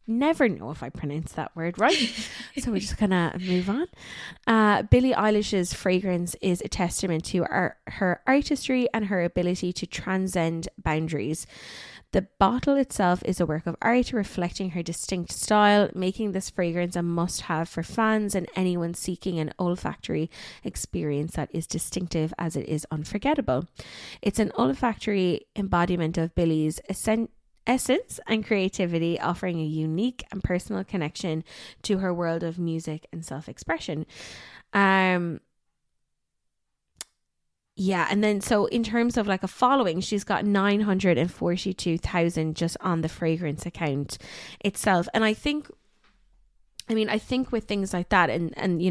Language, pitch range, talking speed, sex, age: English, 165-205 Hz, 150 wpm, female, 20-39